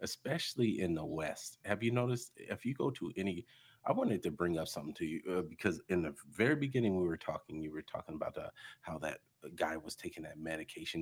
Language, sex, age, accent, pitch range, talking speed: English, male, 40-59, American, 80-110 Hz, 225 wpm